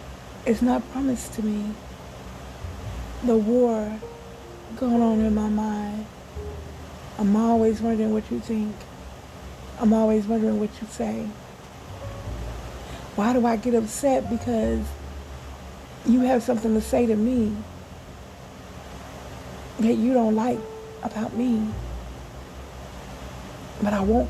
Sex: female